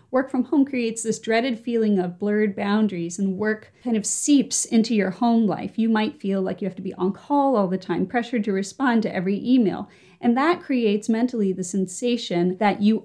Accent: American